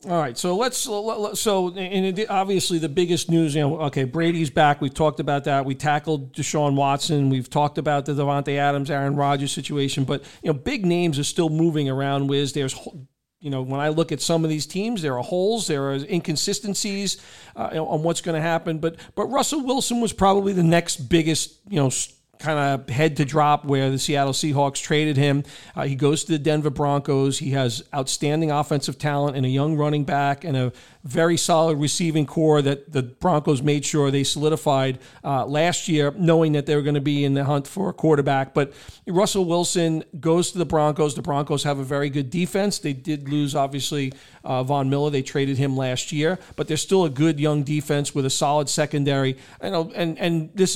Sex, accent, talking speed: male, American, 210 wpm